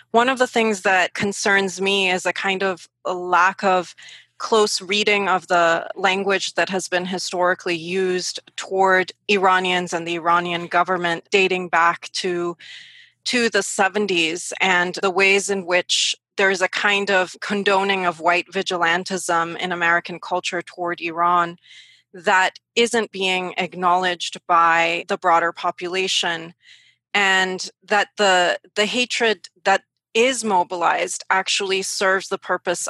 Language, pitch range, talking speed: English, 175-200 Hz, 135 wpm